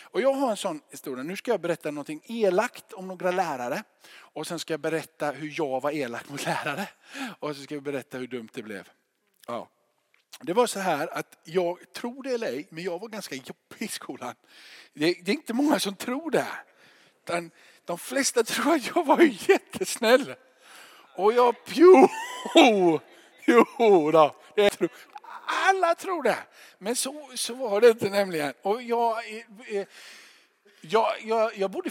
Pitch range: 140-235 Hz